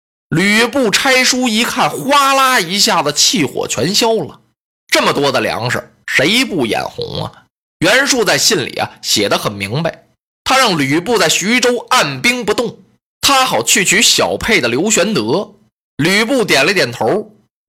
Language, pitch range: Chinese, 190-250 Hz